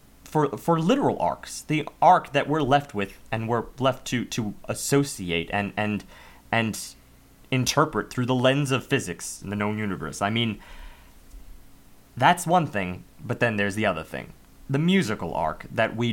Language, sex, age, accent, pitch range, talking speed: English, male, 30-49, American, 100-155 Hz, 165 wpm